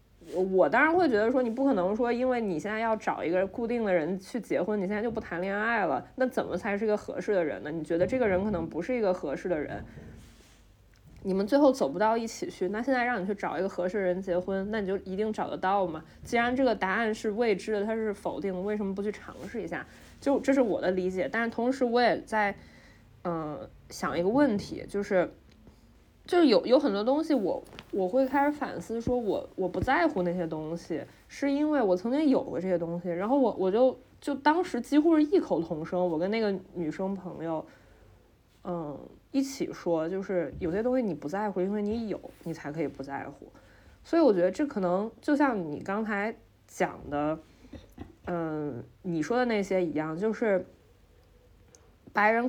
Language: Chinese